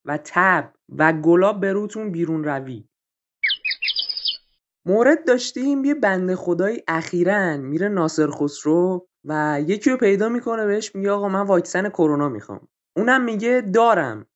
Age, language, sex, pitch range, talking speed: 20-39, Persian, male, 170-230 Hz, 130 wpm